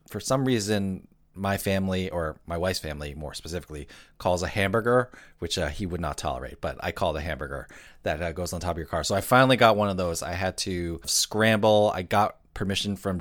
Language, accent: English, American